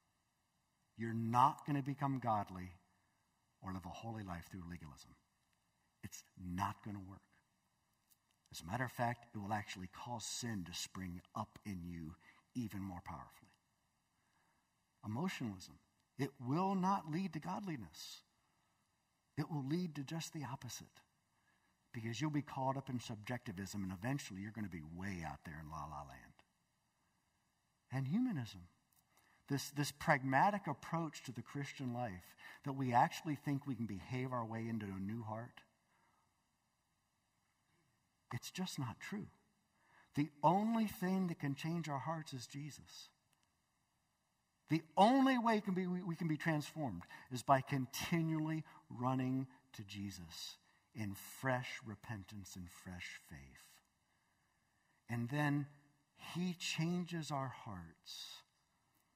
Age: 60-79